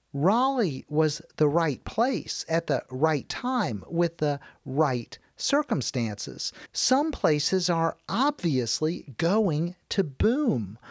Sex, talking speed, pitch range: male, 110 wpm, 150-225 Hz